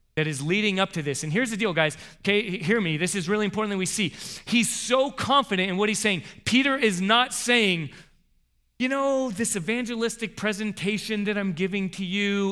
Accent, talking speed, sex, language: American, 200 wpm, male, English